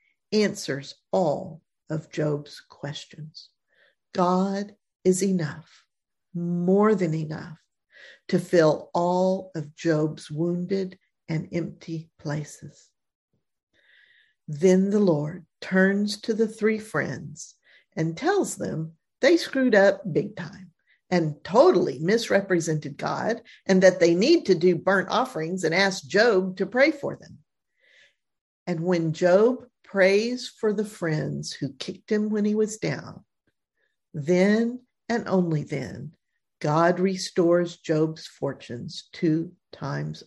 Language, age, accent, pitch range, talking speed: English, 50-69, American, 160-215 Hz, 120 wpm